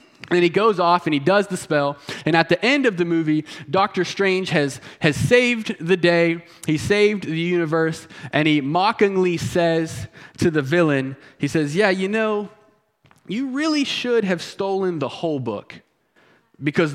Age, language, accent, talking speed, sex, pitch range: 20-39, English, American, 170 wpm, male, 140-185 Hz